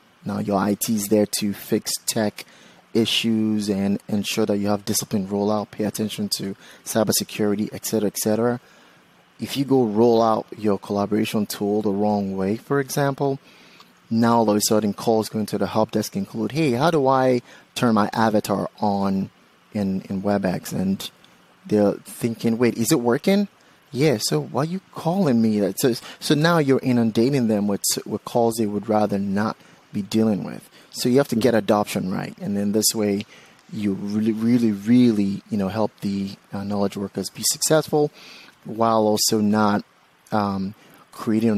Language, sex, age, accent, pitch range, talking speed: English, male, 30-49, American, 100-115 Hz, 175 wpm